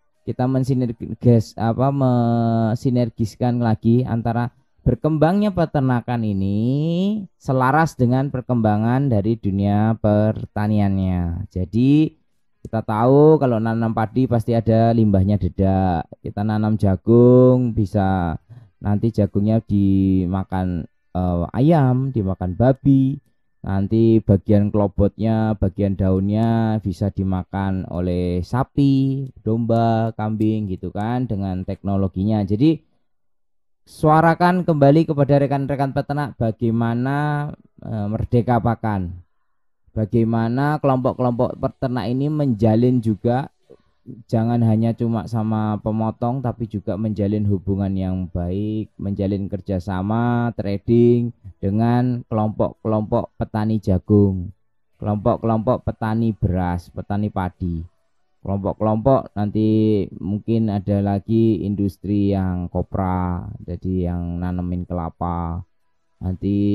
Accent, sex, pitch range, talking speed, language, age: native, male, 95-120 Hz, 90 wpm, Indonesian, 20-39